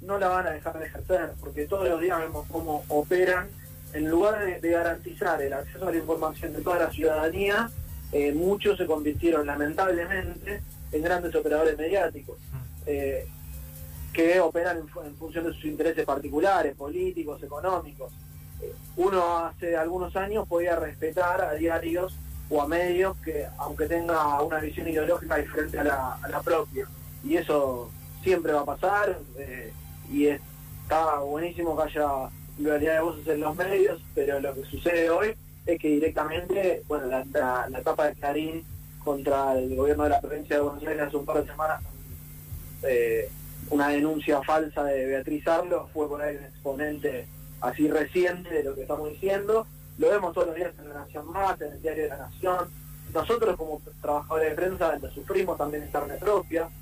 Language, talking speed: Spanish, 170 wpm